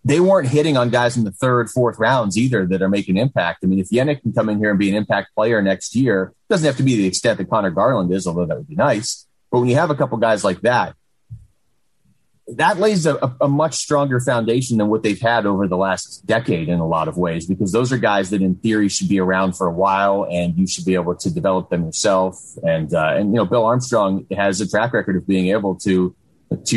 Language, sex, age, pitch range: English, male, 30-49, 95-115 Hz